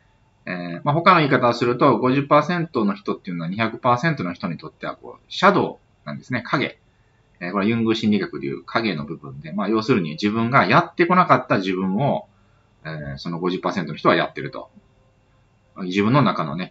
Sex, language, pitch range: male, Japanese, 95-140 Hz